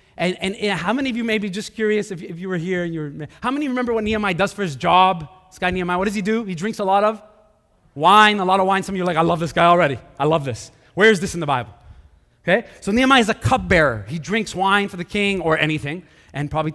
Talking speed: 285 wpm